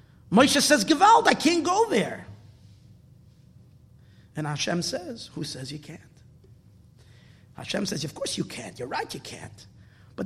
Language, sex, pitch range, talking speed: English, male, 210-345 Hz, 145 wpm